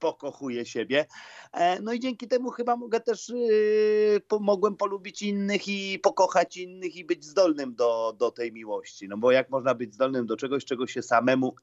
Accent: native